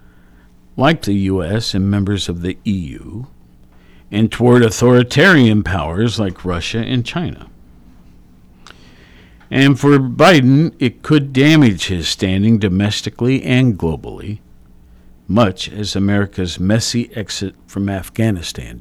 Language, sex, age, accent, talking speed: English, male, 50-69, American, 110 wpm